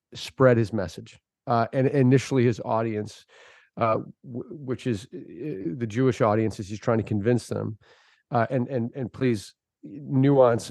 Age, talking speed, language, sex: 40-59, 150 wpm, English, male